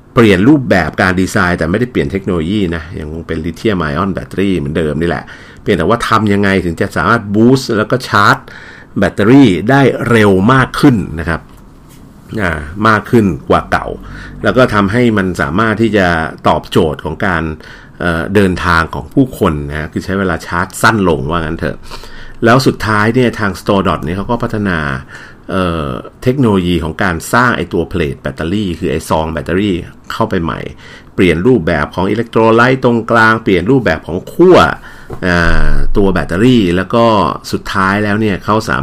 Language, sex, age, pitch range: Thai, male, 60-79, 85-110 Hz